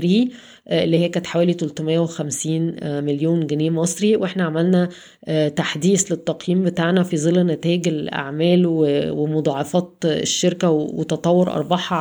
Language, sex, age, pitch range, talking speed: Arabic, female, 20-39, 160-180 Hz, 105 wpm